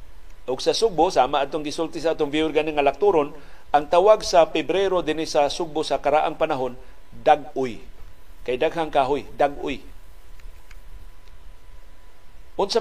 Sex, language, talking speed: male, Filipino, 125 wpm